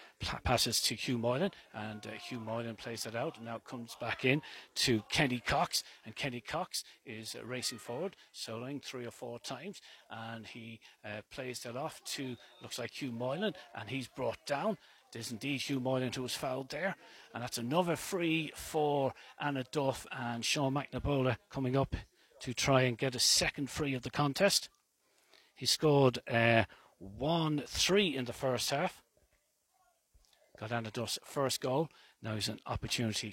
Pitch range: 120-155 Hz